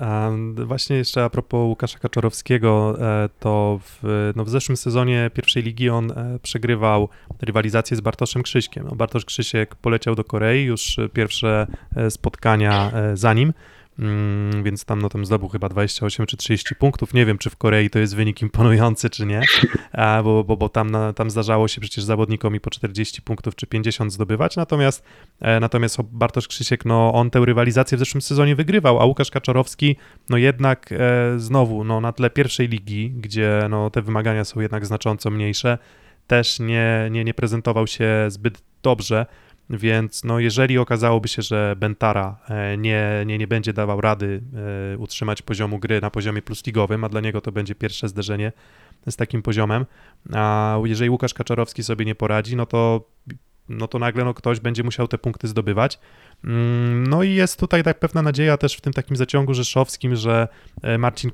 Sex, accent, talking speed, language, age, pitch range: male, native, 170 wpm, Polish, 20-39, 110-120 Hz